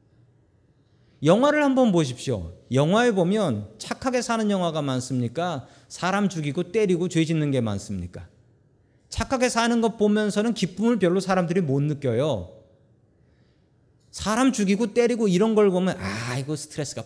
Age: 40-59